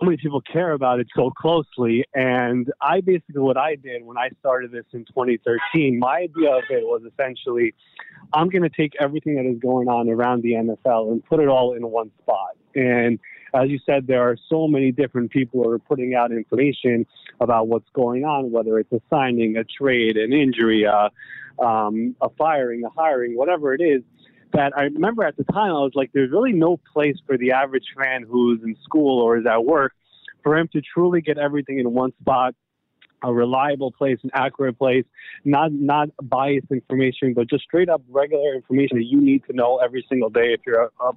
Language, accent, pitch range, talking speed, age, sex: English, American, 120-155 Hz, 205 wpm, 30-49, male